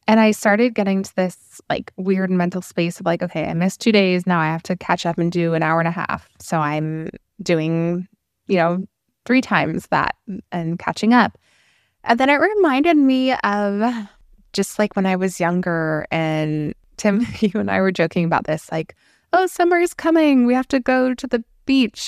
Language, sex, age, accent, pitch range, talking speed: English, female, 20-39, American, 180-225 Hz, 200 wpm